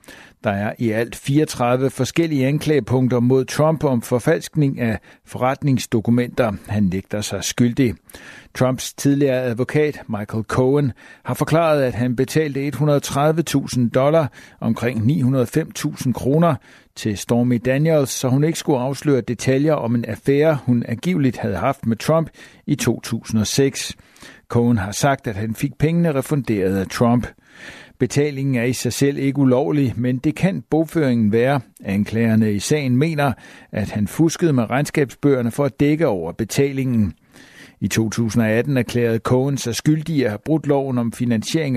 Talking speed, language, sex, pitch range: 145 wpm, Danish, male, 120-145 Hz